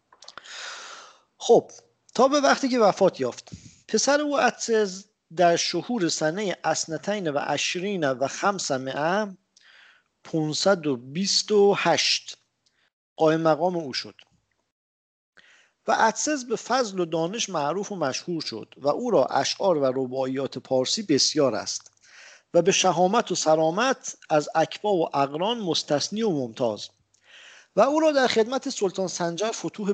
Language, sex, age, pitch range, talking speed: English, male, 50-69, 145-215 Hz, 125 wpm